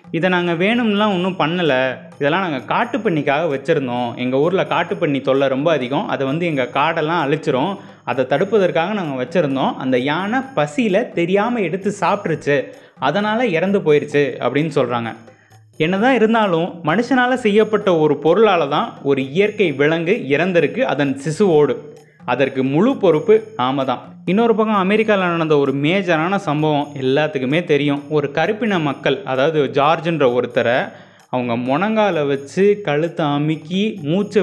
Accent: native